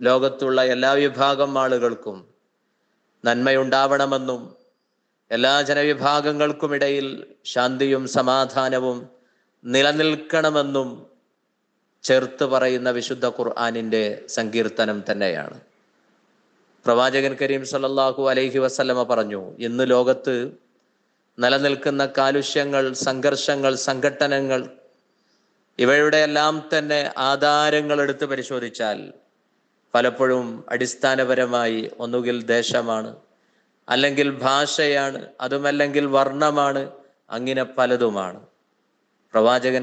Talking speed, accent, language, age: 70 wpm, native, Malayalam, 20-39